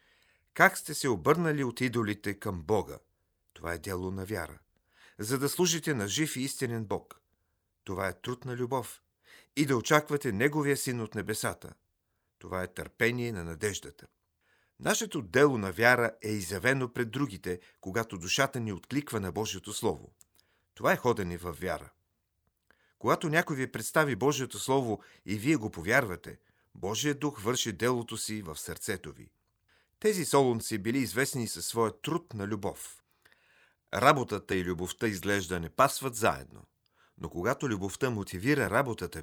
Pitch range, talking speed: 95-130 Hz, 150 wpm